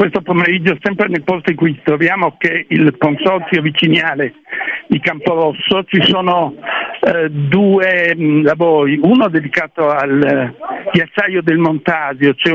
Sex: male